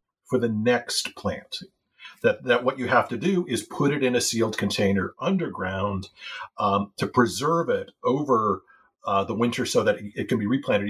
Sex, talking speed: male, 180 wpm